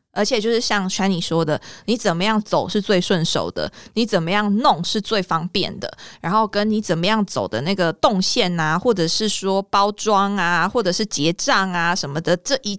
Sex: female